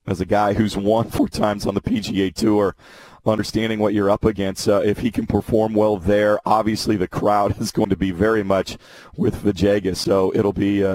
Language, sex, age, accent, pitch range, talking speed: English, male, 40-59, American, 105-115 Hz, 210 wpm